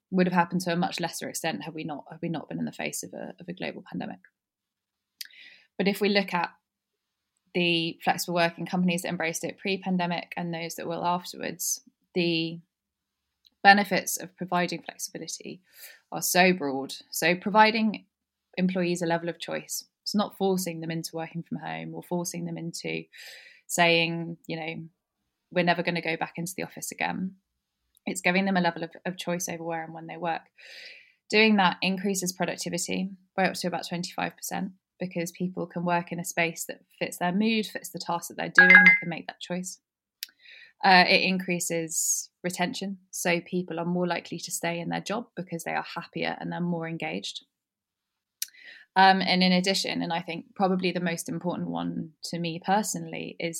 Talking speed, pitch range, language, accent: 185 wpm, 170-190 Hz, English, British